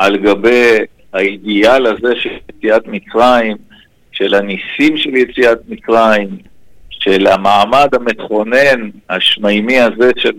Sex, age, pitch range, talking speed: male, 50-69, 105-135 Hz, 105 wpm